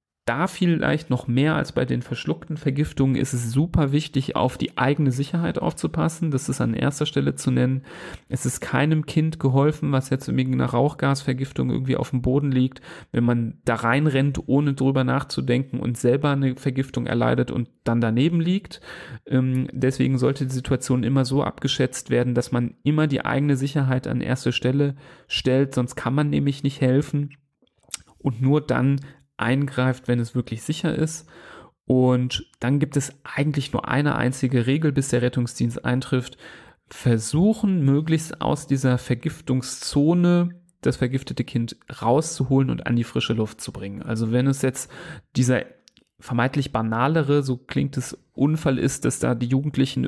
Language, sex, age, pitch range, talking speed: German, male, 40-59, 125-145 Hz, 160 wpm